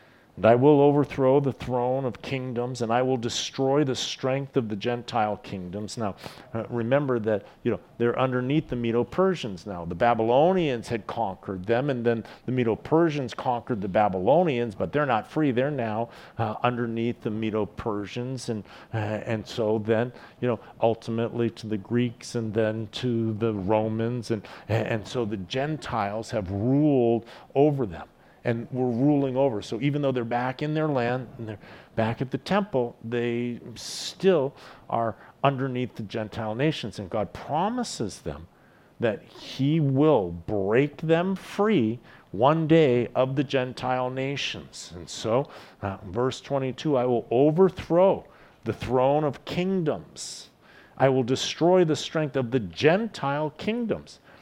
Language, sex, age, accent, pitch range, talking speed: English, male, 50-69, American, 115-140 Hz, 150 wpm